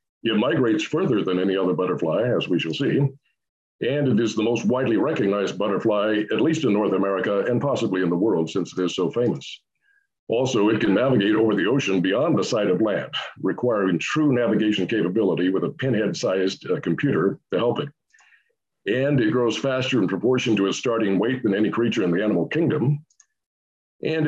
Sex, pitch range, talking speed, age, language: male, 100-125 Hz, 190 wpm, 50-69, English